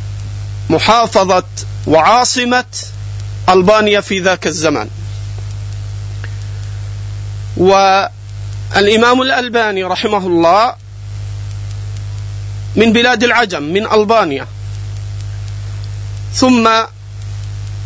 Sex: male